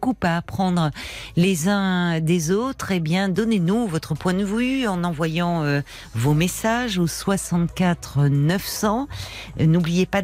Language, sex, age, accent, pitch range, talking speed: French, female, 40-59, French, 145-175 Hz, 145 wpm